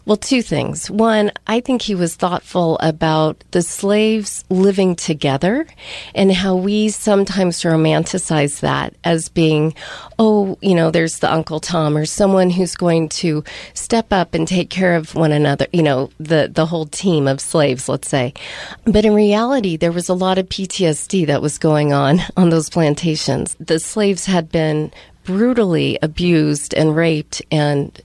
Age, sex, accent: 40-59, female, American